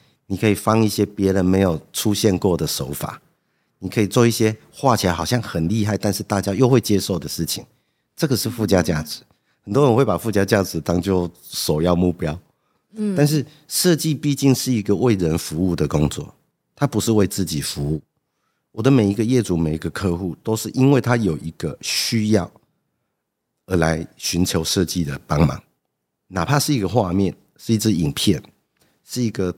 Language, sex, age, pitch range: English, male, 50-69, 90-120 Hz